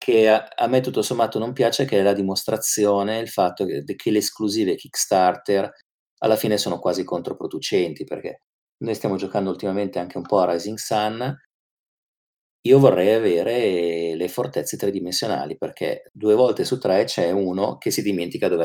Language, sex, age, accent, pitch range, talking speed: Italian, male, 30-49, native, 95-135 Hz, 165 wpm